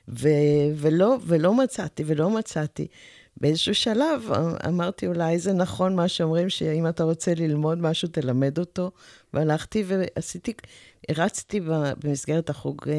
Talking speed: 120 wpm